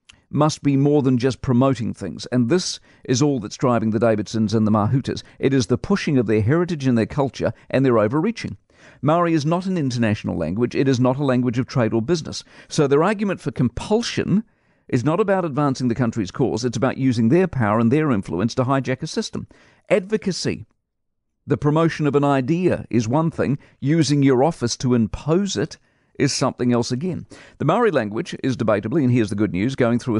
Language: English